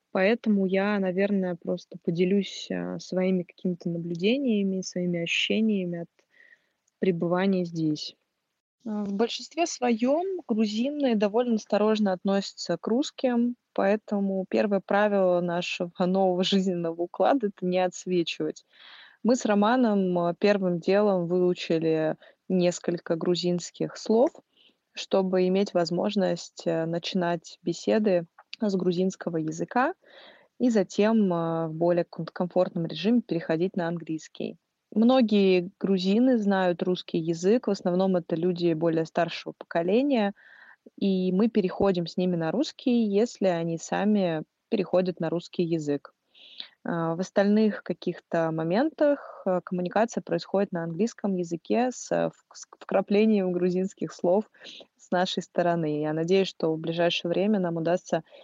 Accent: native